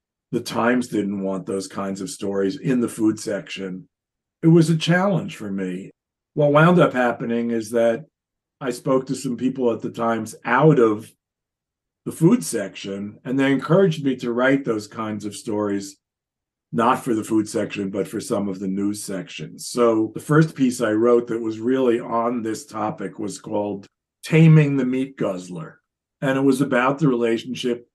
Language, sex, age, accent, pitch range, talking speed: English, male, 50-69, American, 100-130 Hz, 180 wpm